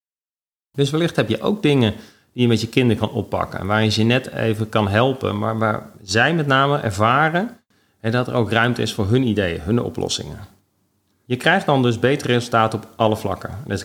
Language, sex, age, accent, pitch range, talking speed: Dutch, male, 40-59, Dutch, 100-125 Hz, 210 wpm